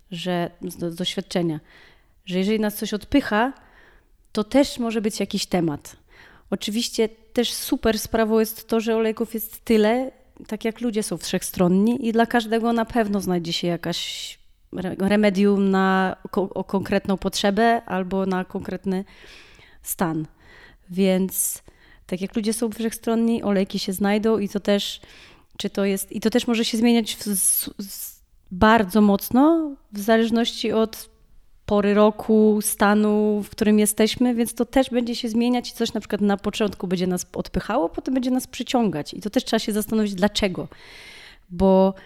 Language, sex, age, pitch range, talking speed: Polish, female, 30-49, 195-230 Hz, 150 wpm